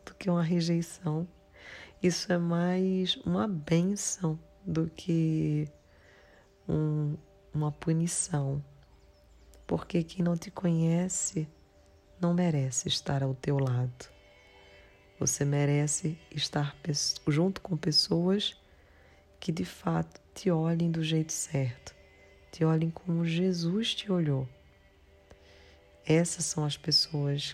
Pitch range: 135-165 Hz